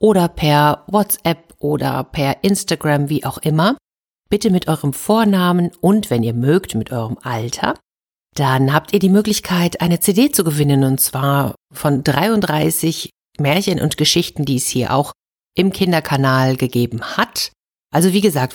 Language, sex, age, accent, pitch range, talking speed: German, female, 50-69, German, 135-185 Hz, 150 wpm